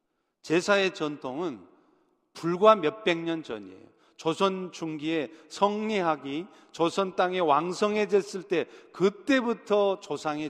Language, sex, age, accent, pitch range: Korean, male, 40-59, native, 155-195 Hz